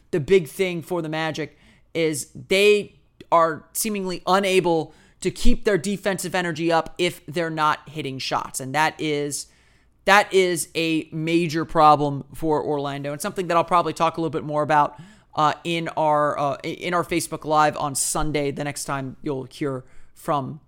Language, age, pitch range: English, 30-49, 155-190 Hz